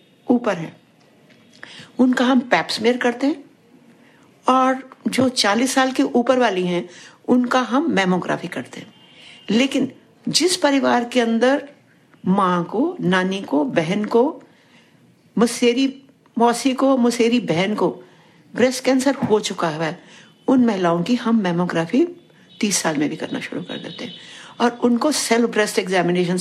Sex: female